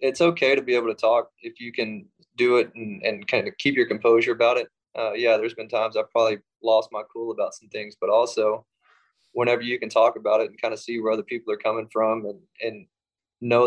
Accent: American